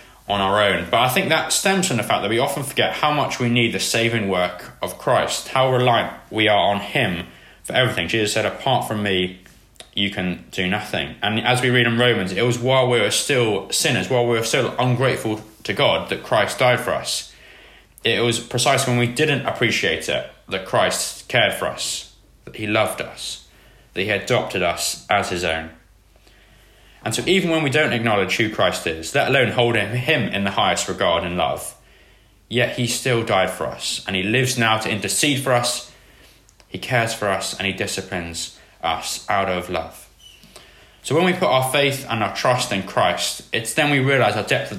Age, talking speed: 20-39, 205 wpm